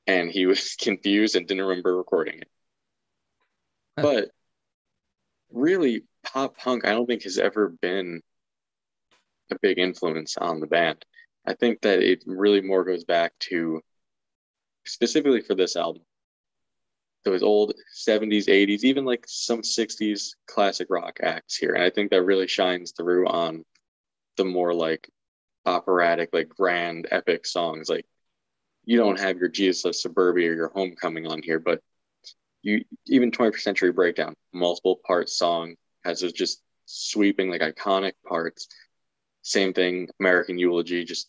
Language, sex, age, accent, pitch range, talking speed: English, male, 20-39, American, 85-105 Hz, 145 wpm